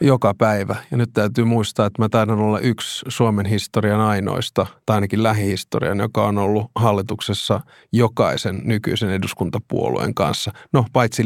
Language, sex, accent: Finnish, male, native